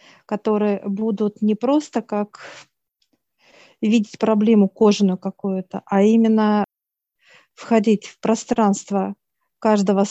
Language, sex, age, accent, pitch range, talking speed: Russian, female, 50-69, native, 200-230 Hz, 90 wpm